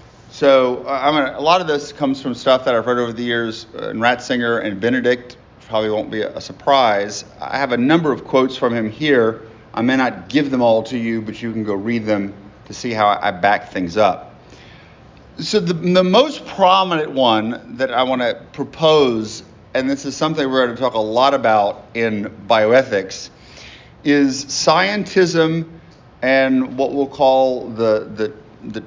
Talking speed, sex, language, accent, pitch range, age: 195 wpm, male, English, American, 115-145 Hz, 40-59